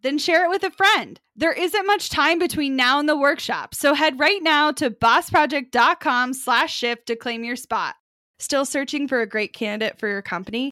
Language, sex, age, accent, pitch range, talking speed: English, female, 10-29, American, 215-290 Hz, 195 wpm